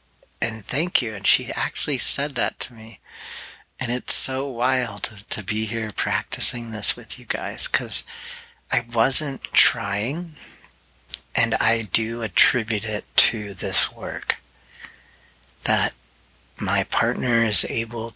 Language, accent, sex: English, American, male